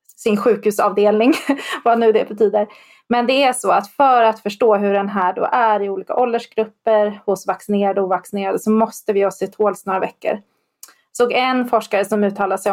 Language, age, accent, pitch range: Swedish, 30-49, native, 200-230 Hz